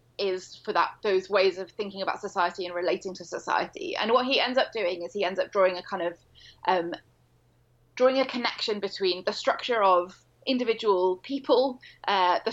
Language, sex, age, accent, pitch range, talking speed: English, female, 20-39, British, 180-220 Hz, 185 wpm